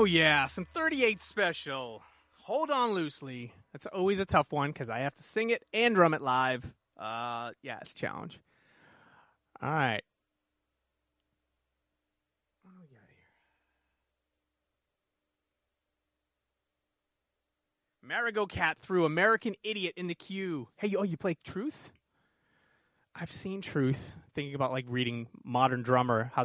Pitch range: 115-170 Hz